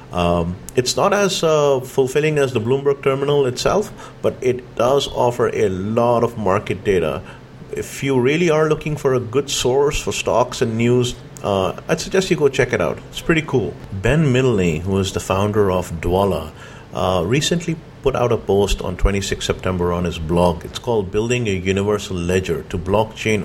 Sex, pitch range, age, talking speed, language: male, 95-125 Hz, 50-69, 185 wpm, English